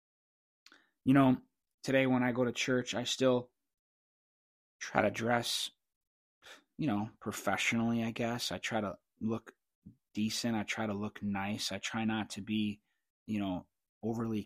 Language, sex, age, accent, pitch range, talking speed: English, male, 20-39, American, 100-115 Hz, 150 wpm